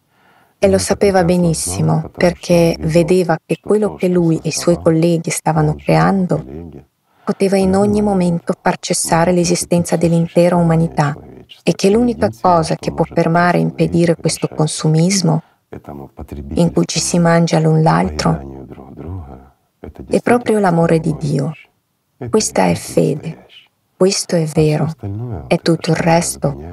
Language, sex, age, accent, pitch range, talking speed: Italian, female, 30-49, native, 155-185 Hz, 130 wpm